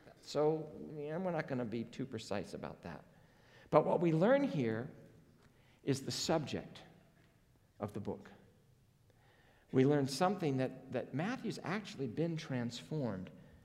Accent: American